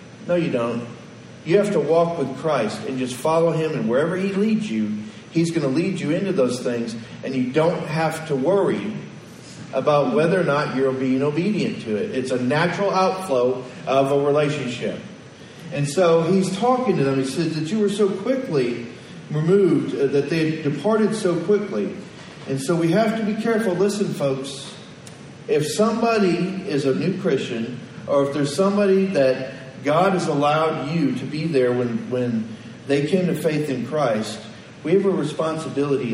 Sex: male